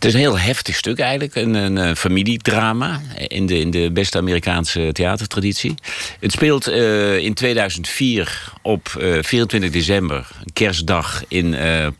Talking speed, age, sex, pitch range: 150 wpm, 50-69, male, 85-105 Hz